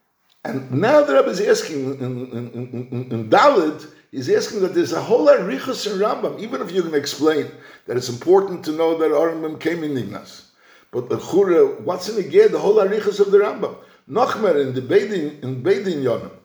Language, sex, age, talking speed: English, male, 60-79, 195 wpm